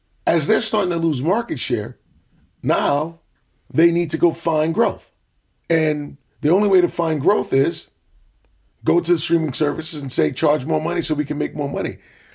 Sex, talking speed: male, 185 wpm